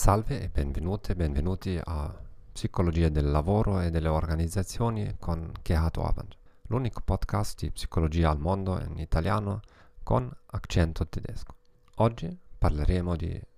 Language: Italian